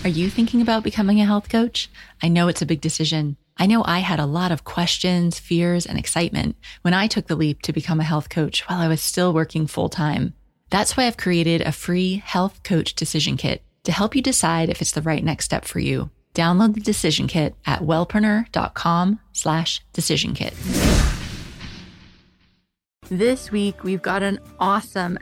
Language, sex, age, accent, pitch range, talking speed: English, female, 20-39, American, 165-205 Hz, 185 wpm